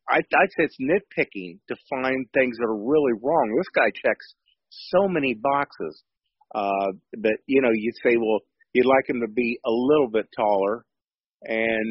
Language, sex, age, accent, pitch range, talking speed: English, male, 40-59, American, 105-130 Hz, 170 wpm